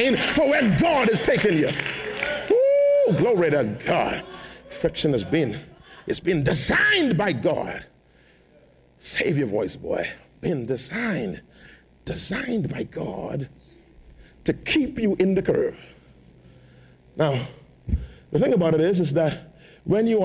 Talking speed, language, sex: 125 wpm, English, male